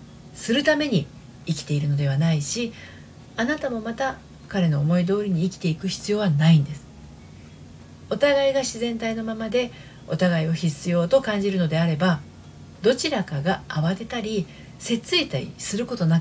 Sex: female